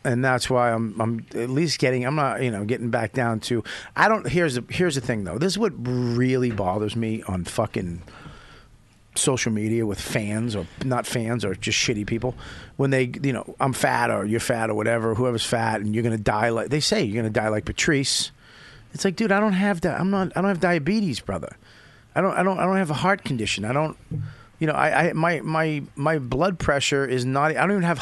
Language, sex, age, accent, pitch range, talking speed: English, male, 40-59, American, 115-155 Hz, 240 wpm